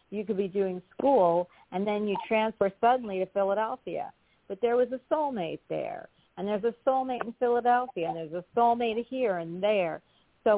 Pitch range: 170-220 Hz